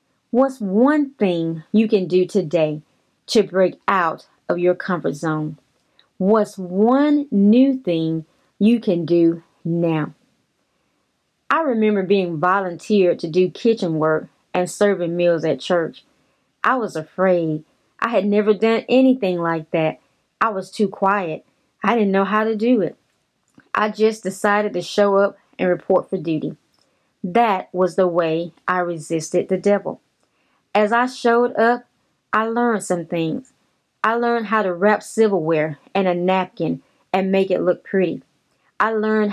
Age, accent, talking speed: 30-49, American, 150 wpm